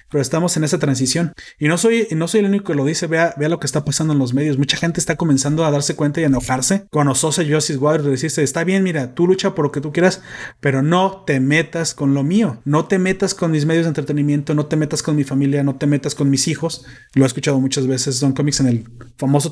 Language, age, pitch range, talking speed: Spanish, 30-49, 140-175 Hz, 270 wpm